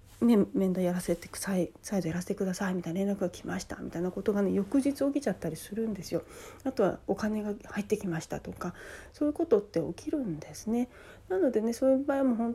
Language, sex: Japanese, female